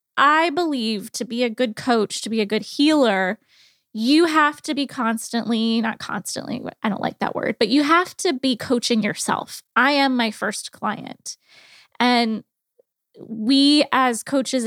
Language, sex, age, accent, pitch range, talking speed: English, female, 20-39, American, 220-260 Hz, 165 wpm